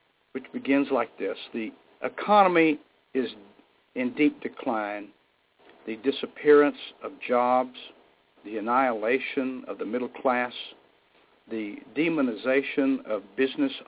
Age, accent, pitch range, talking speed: 60-79, American, 125-160 Hz, 105 wpm